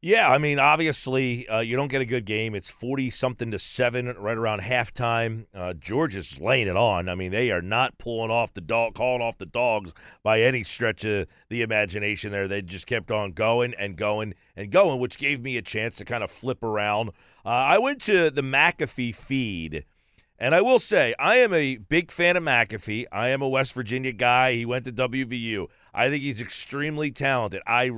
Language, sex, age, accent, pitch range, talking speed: English, male, 40-59, American, 110-140 Hz, 210 wpm